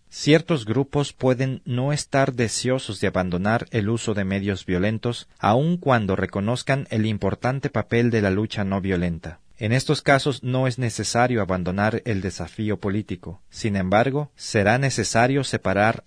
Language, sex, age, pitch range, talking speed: Spanish, male, 40-59, 100-130 Hz, 145 wpm